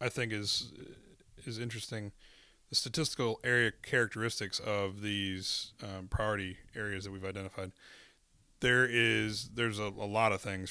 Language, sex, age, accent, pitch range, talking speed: English, male, 30-49, American, 95-115 Hz, 140 wpm